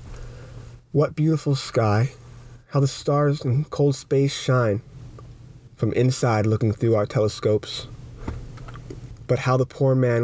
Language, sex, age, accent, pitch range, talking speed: English, male, 20-39, American, 115-135 Hz, 125 wpm